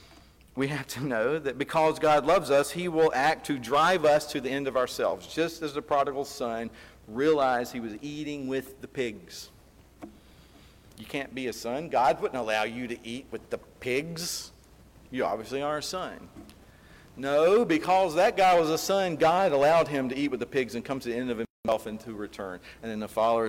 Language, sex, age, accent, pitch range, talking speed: English, male, 50-69, American, 110-145 Hz, 200 wpm